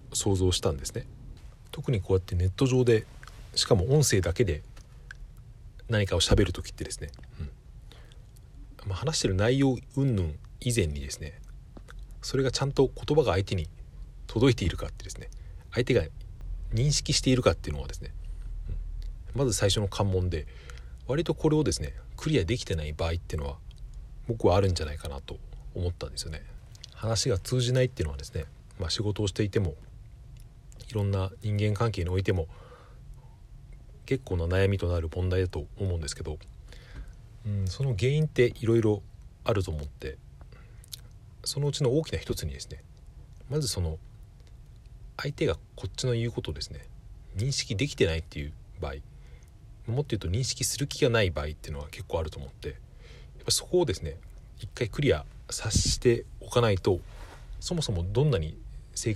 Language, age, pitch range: Japanese, 40-59, 85-120 Hz